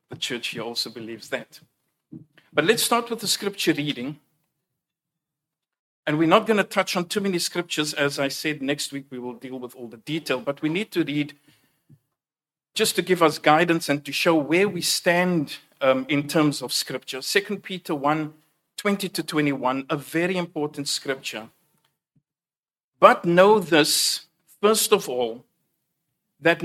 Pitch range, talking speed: 145-175 Hz, 165 wpm